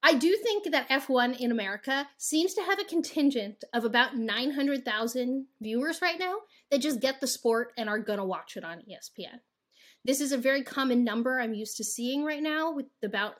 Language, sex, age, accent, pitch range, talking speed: English, female, 30-49, American, 230-285 Hz, 200 wpm